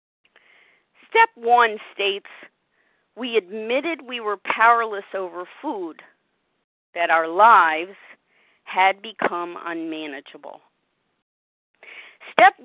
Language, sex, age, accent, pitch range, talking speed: English, female, 50-69, American, 190-275 Hz, 80 wpm